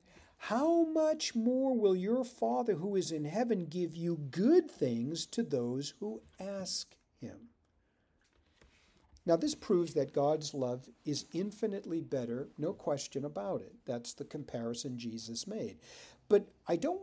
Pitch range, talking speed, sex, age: 130-205 Hz, 140 wpm, male, 50-69